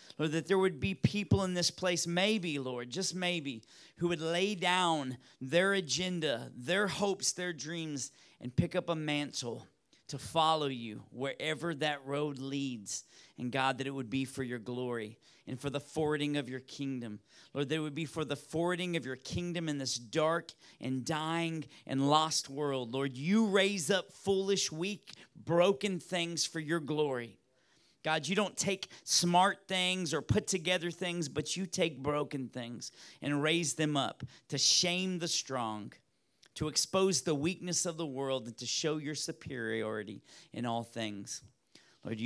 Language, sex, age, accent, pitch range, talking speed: English, male, 40-59, American, 130-175 Hz, 170 wpm